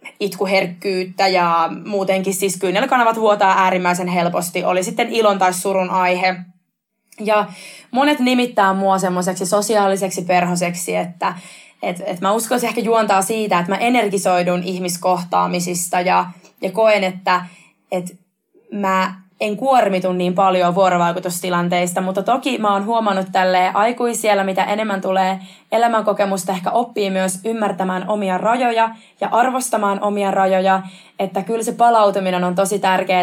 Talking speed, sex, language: 130 wpm, female, Finnish